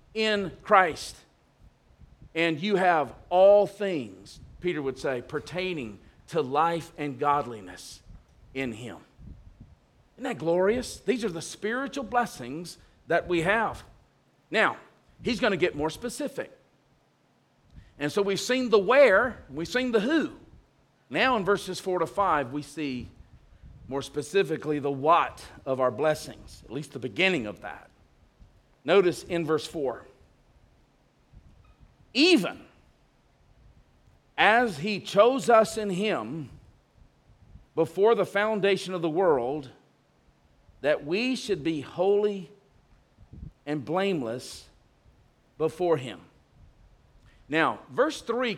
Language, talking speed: English, 115 wpm